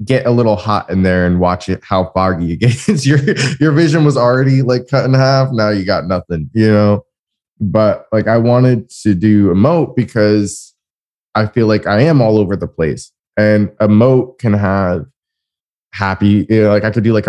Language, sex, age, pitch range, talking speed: English, male, 20-39, 95-110 Hz, 200 wpm